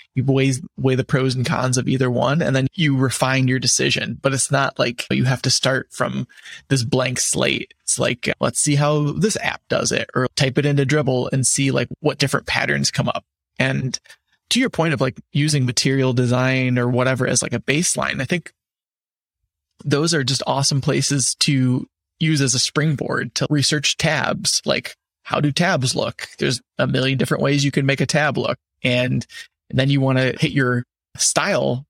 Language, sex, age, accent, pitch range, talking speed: English, male, 20-39, American, 125-145 Hz, 200 wpm